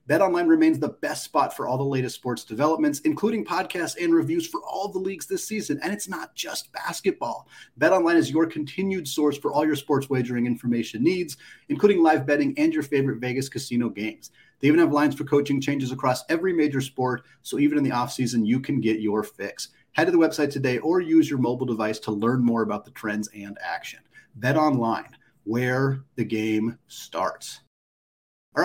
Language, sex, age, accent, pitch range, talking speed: English, male, 30-49, American, 125-160 Hz, 195 wpm